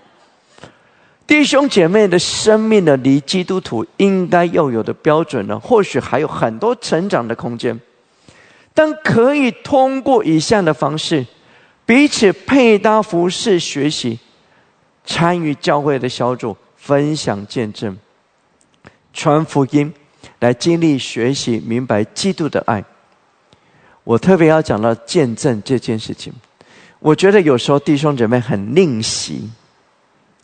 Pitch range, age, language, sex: 120-175 Hz, 50-69, English, male